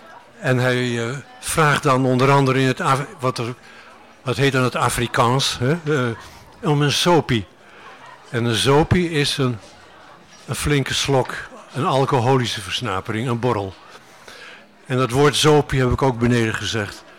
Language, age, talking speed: Dutch, 50-69, 145 wpm